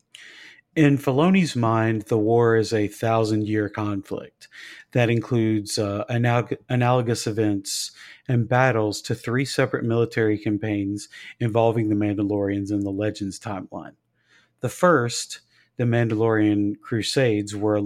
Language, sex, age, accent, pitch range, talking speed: English, male, 40-59, American, 105-125 Hz, 120 wpm